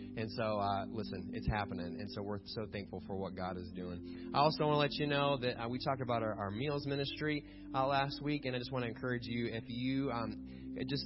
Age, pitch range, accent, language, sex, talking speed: 20-39, 100-125 Hz, American, English, male, 250 wpm